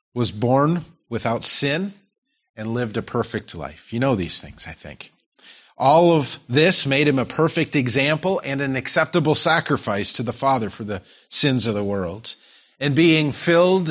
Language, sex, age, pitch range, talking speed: English, male, 40-59, 115-160 Hz, 170 wpm